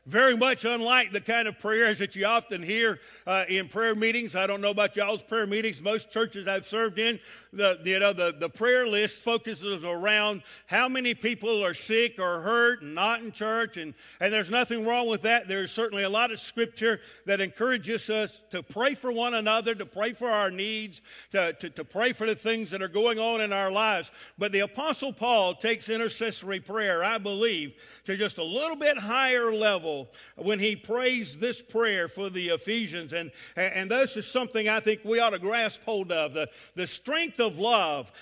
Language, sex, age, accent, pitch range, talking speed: English, male, 50-69, American, 195-235 Hz, 200 wpm